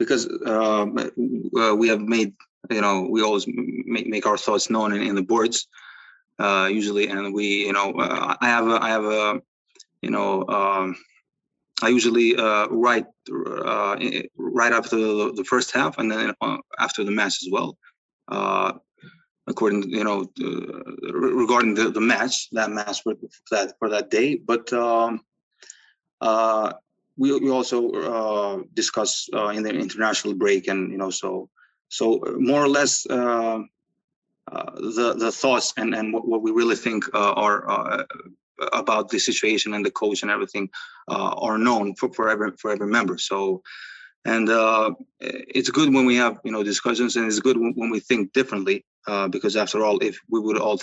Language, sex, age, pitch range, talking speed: English, male, 20-39, 105-125 Hz, 175 wpm